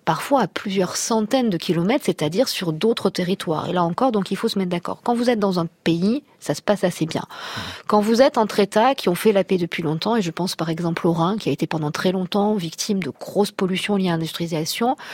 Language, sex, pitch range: French, female, 165-200 Hz